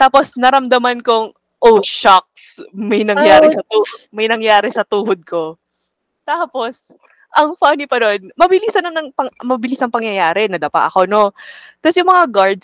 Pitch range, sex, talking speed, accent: 230-345 Hz, female, 140 wpm, native